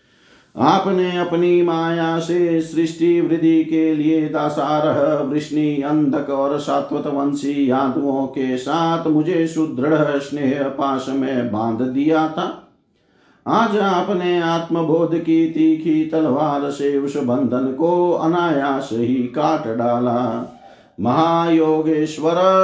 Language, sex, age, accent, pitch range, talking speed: Hindi, male, 50-69, native, 135-170 Hz, 105 wpm